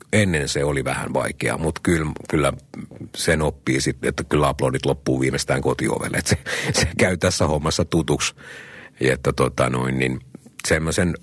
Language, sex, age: Finnish, male, 50-69